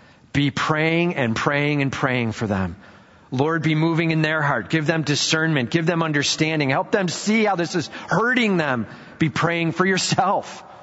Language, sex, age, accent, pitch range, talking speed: English, male, 40-59, American, 135-185 Hz, 175 wpm